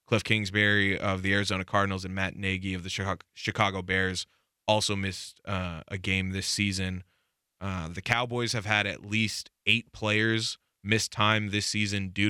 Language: English